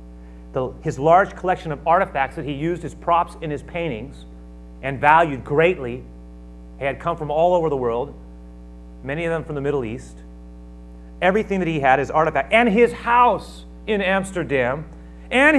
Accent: American